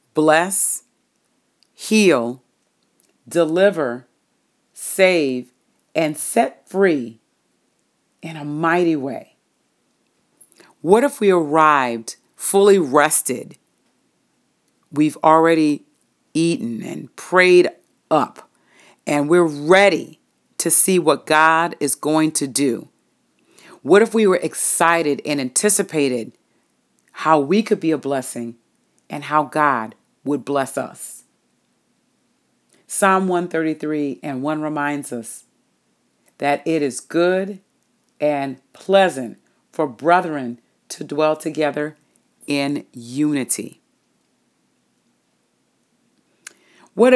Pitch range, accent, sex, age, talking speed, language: 145-180 Hz, American, female, 40-59, 95 wpm, English